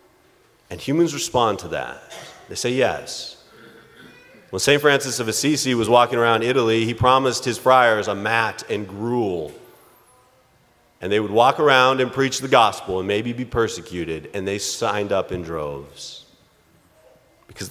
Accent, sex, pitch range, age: American, male, 100-130 Hz, 30-49